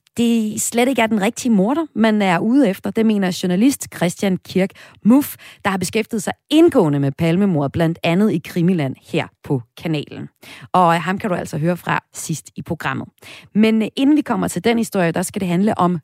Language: Danish